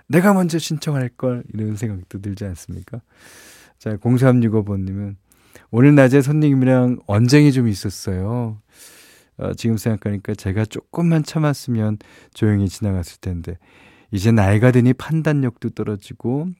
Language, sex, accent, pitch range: Korean, male, native, 95-130 Hz